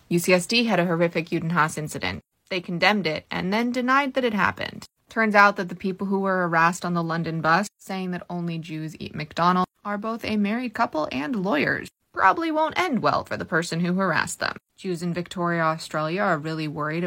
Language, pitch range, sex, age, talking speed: English, 165-205 Hz, female, 20-39, 200 wpm